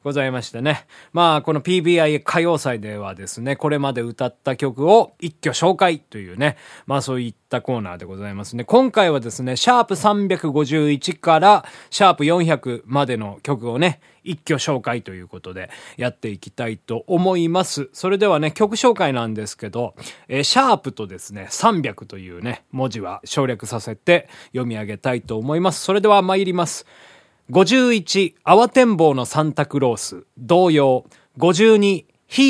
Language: Japanese